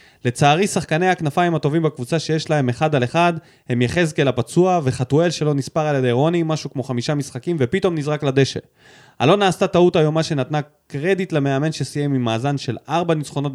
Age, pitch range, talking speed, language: 20-39, 130-170 Hz, 175 wpm, Hebrew